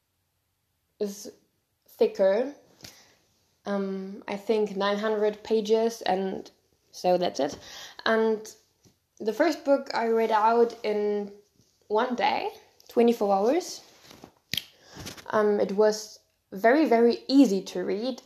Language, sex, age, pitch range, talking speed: English, female, 10-29, 195-235 Hz, 100 wpm